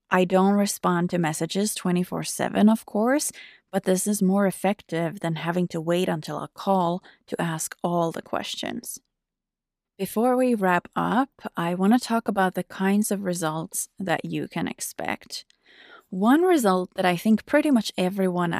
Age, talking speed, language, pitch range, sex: 30-49, 160 wpm, English, 170-220 Hz, female